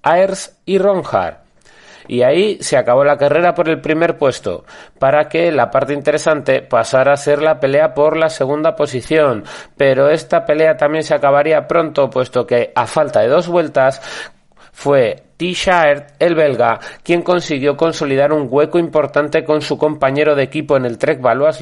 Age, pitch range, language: 30-49, 135-165 Hz, Spanish